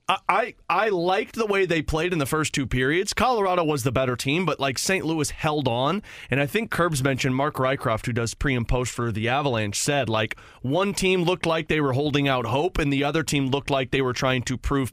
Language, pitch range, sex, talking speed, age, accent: English, 125-155 Hz, male, 240 wpm, 30-49, American